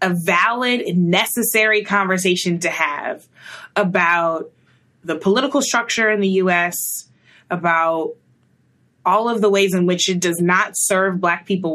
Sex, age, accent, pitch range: female, 20-39, American, 180-245 Hz